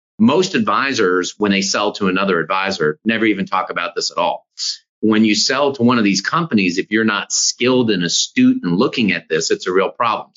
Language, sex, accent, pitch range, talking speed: English, male, American, 100-125 Hz, 215 wpm